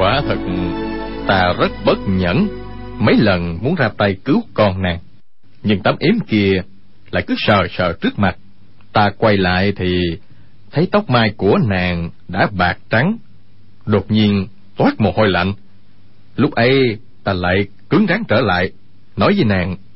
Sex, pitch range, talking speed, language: male, 95-110 Hz, 160 wpm, Vietnamese